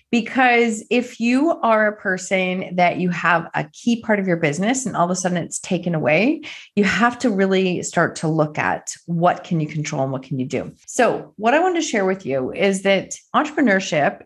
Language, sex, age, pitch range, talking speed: English, female, 30-49, 160-225 Hz, 215 wpm